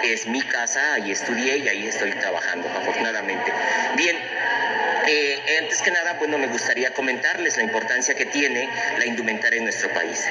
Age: 40-59